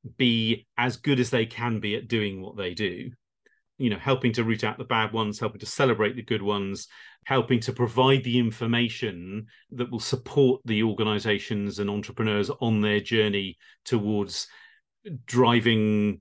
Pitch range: 105-130 Hz